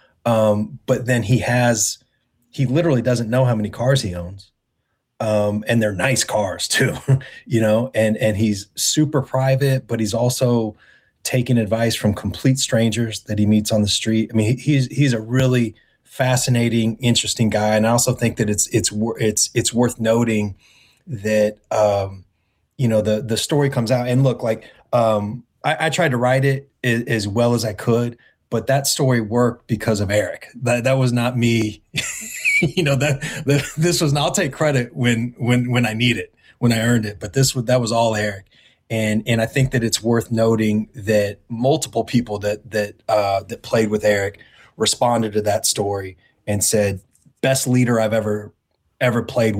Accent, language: American, English